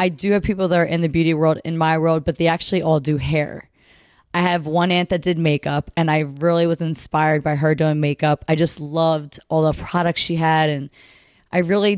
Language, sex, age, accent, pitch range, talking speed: English, female, 20-39, American, 155-180 Hz, 230 wpm